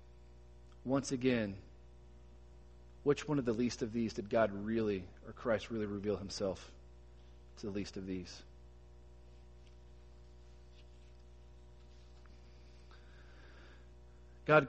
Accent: American